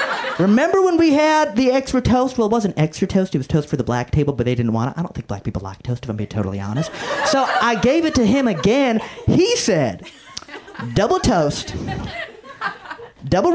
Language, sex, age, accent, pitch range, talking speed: English, male, 30-49, American, 125-205 Hz, 215 wpm